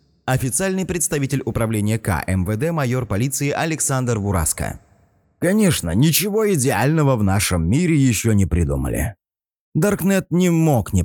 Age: 30-49